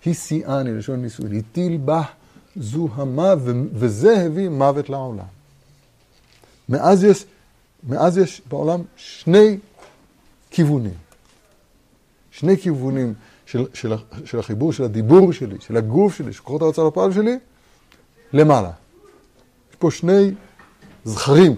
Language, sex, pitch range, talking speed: Hebrew, male, 110-160 Hz, 105 wpm